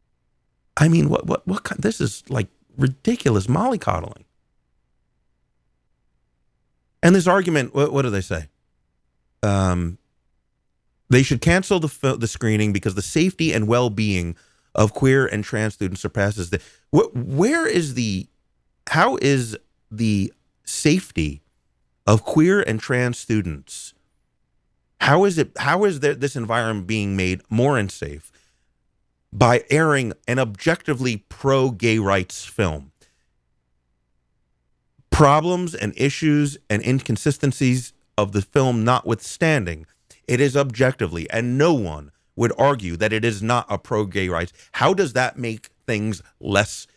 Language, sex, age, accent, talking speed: English, male, 30-49, American, 130 wpm